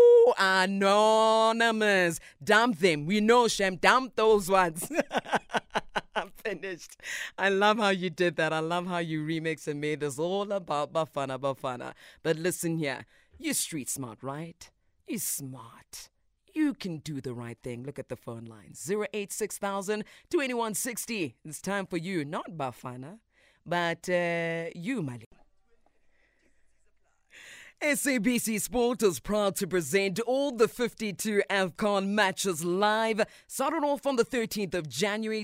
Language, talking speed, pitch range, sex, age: English, 135 wpm, 170-230 Hz, female, 30-49